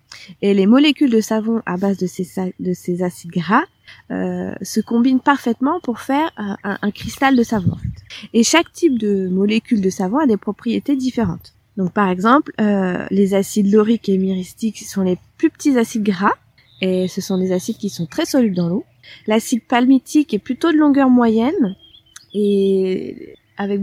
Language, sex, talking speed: French, female, 175 wpm